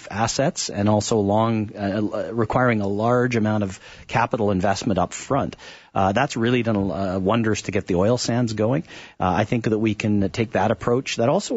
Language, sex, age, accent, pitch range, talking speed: English, male, 40-59, American, 100-115 Hz, 195 wpm